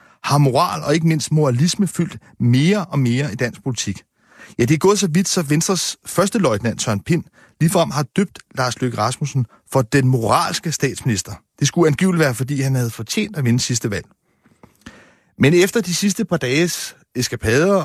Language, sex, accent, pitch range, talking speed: Danish, male, native, 125-170 Hz, 180 wpm